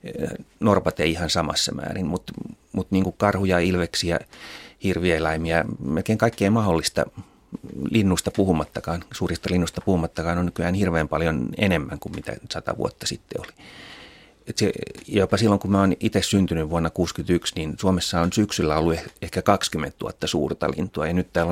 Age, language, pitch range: 30-49, Finnish, 80-100 Hz